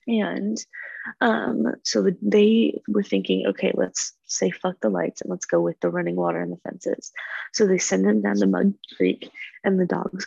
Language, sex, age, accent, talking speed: English, female, 20-39, American, 200 wpm